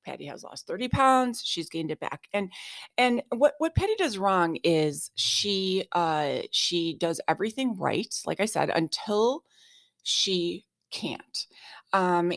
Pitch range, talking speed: 160-195 Hz, 145 wpm